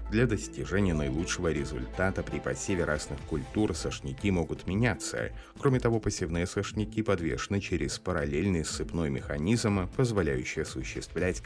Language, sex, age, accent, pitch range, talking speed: Russian, male, 30-49, native, 75-100 Hz, 115 wpm